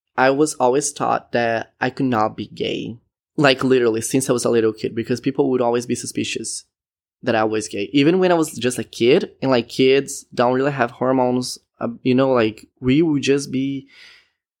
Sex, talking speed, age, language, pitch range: male, 205 wpm, 20-39, English, 115-135 Hz